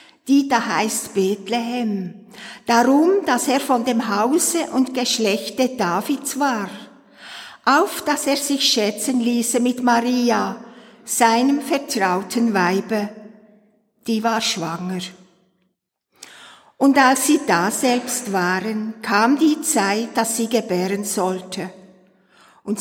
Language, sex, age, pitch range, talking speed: German, female, 50-69, 205-255 Hz, 110 wpm